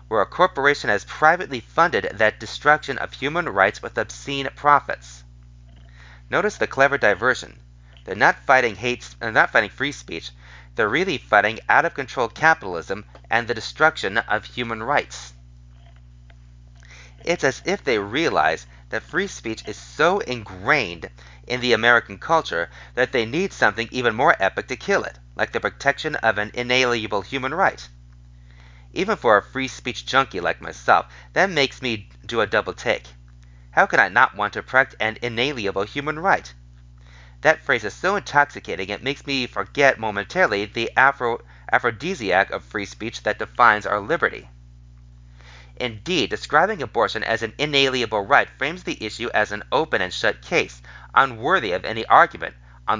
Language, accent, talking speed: English, American, 150 wpm